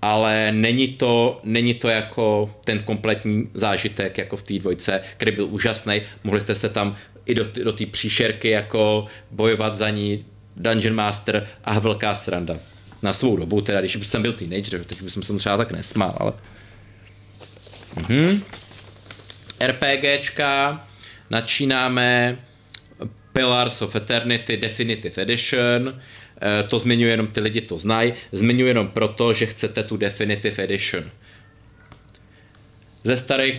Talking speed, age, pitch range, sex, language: 135 wpm, 30-49, 105-120 Hz, male, Czech